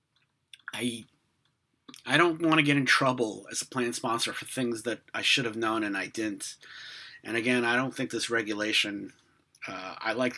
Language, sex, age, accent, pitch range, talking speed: English, male, 30-49, American, 110-135 Hz, 185 wpm